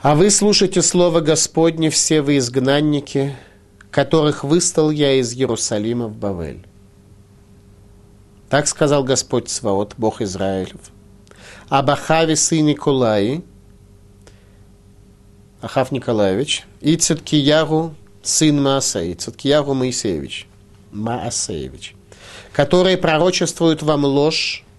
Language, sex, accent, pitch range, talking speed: Russian, male, native, 100-155 Hz, 90 wpm